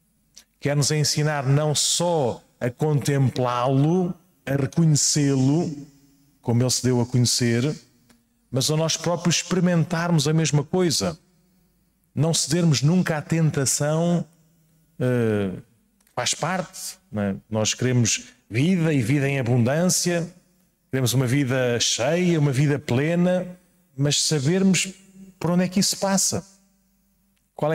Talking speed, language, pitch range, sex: 115 wpm, Portuguese, 125-170 Hz, male